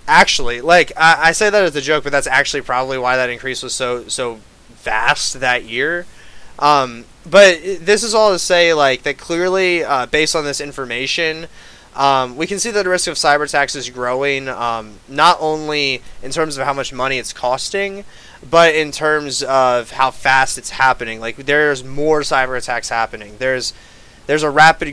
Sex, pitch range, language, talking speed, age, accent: male, 130-165 Hz, English, 190 wpm, 20-39, American